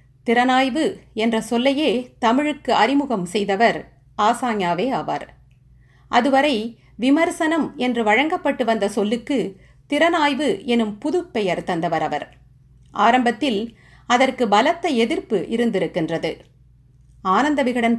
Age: 50-69